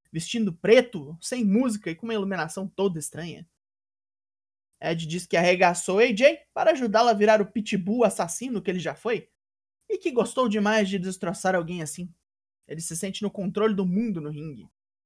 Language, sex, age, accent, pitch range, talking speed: Portuguese, male, 20-39, Brazilian, 180-235 Hz, 170 wpm